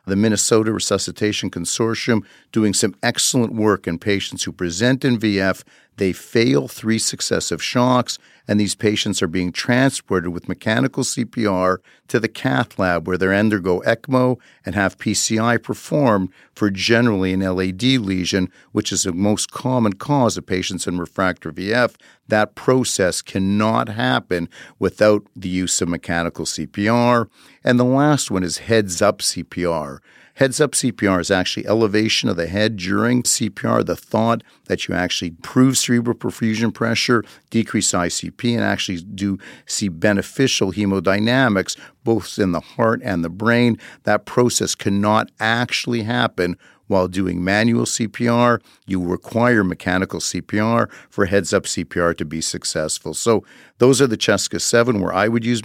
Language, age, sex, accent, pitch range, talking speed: English, 50-69, male, American, 95-120 Hz, 145 wpm